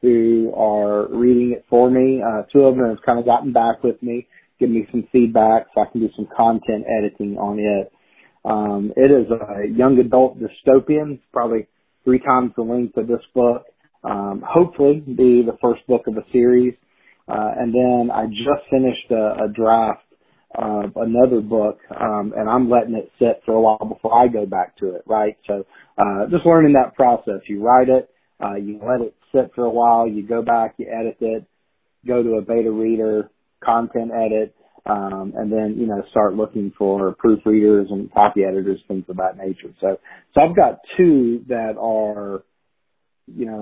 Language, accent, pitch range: English, American, 105-125 Hz